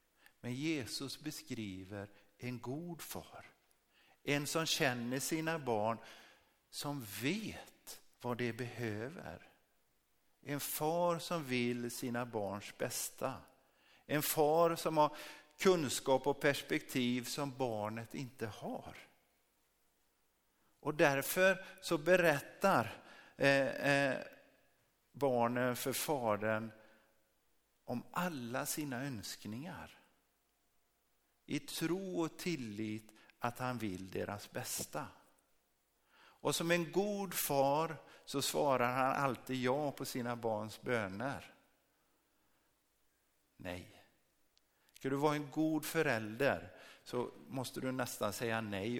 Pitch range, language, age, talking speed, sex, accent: 115-150 Hz, Swedish, 50-69, 100 wpm, male, native